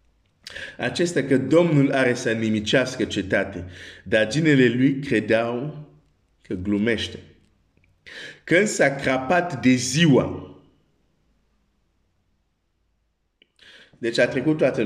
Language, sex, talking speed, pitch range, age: Romanian, male, 90 wpm, 110-155 Hz, 50-69